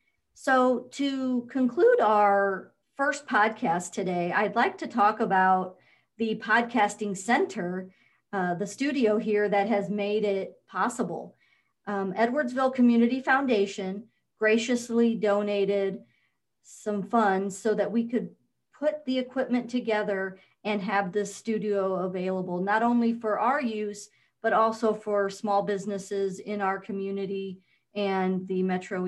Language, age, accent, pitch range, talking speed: English, 40-59, American, 195-235 Hz, 125 wpm